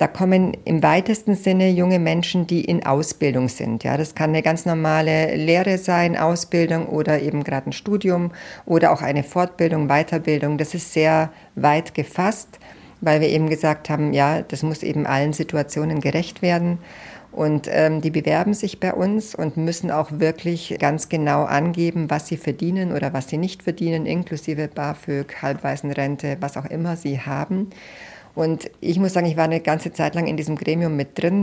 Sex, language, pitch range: female, German, 150-175 Hz